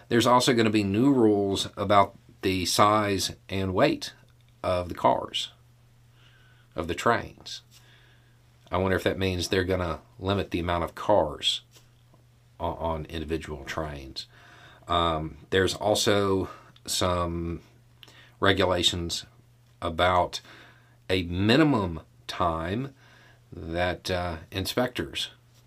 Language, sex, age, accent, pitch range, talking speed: English, male, 40-59, American, 90-120 Hz, 110 wpm